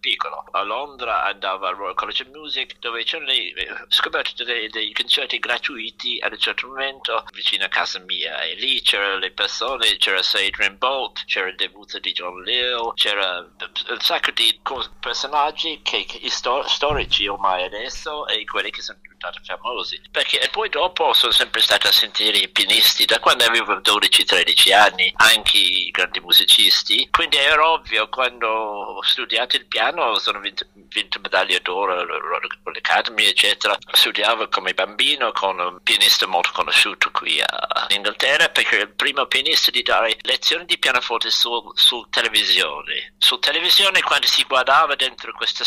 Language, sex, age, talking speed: Italian, male, 50-69, 150 wpm